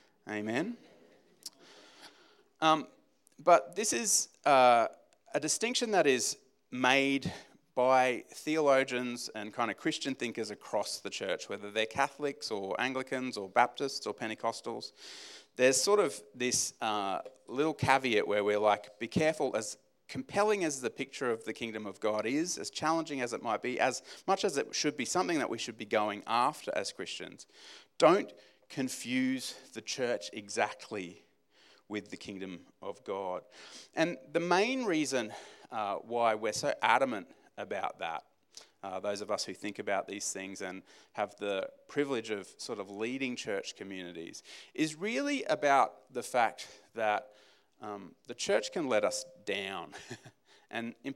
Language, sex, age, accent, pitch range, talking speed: English, male, 30-49, Australian, 110-155 Hz, 150 wpm